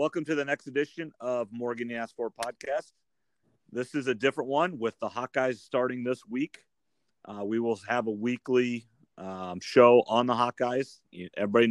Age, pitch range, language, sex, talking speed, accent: 40-59, 105-120 Hz, English, male, 170 wpm, American